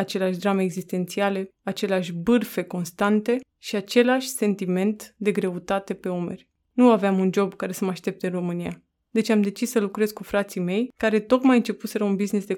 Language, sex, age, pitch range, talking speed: Romanian, female, 20-39, 195-235 Hz, 175 wpm